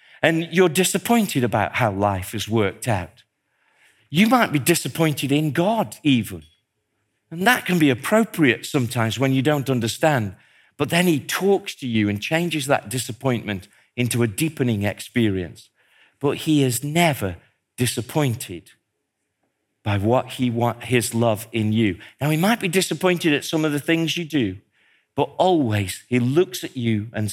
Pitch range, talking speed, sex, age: 110-165 Hz, 160 wpm, male, 50-69